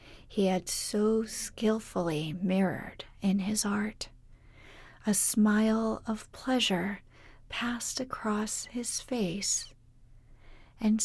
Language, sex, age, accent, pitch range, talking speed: English, female, 40-59, American, 180-220 Hz, 90 wpm